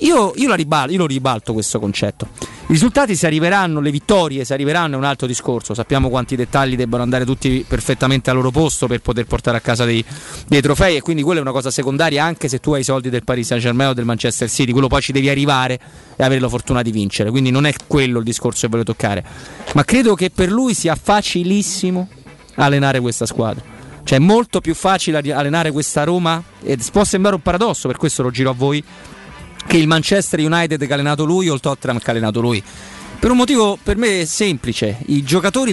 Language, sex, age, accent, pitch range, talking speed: Italian, male, 30-49, native, 130-165 Hz, 220 wpm